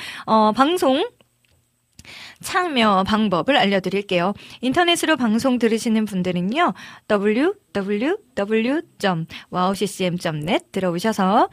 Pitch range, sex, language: 190-270 Hz, female, Korean